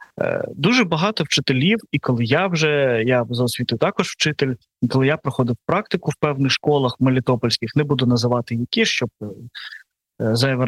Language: Ukrainian